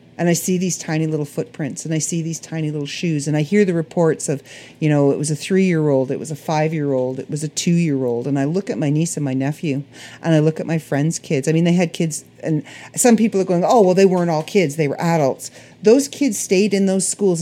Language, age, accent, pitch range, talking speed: English, 40-59, American, 145-185 Hz, 260 wpm